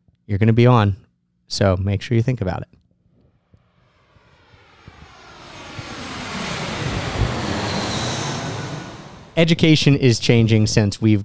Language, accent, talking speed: English, American, 90 wpm